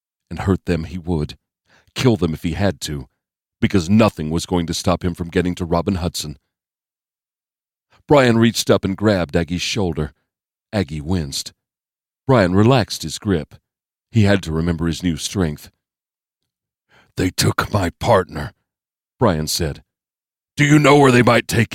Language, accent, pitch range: English, American, 80-105 Hz